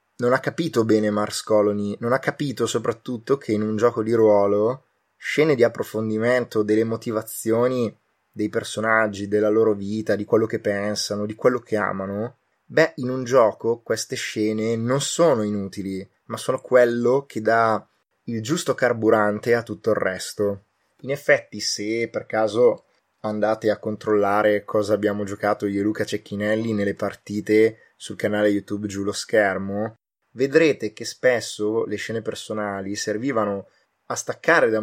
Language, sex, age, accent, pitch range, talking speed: Italian, male, 20-39, native, 105-120 Hz, 150 wpm